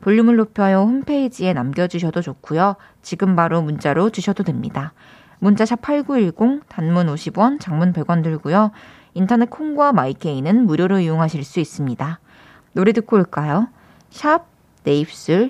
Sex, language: female, Korean